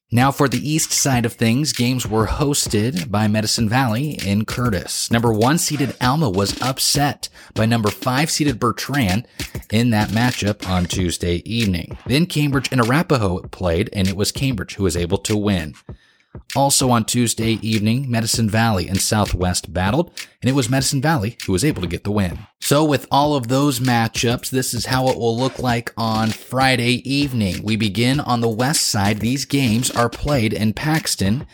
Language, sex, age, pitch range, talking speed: English, male, 30-49, 100-130 Hz, 175 wpm